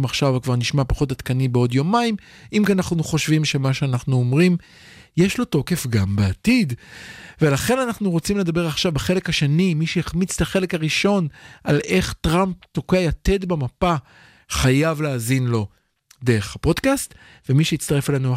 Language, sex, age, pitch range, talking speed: Hebrew, male, 50-69, 130-175 Hz, 145 wpm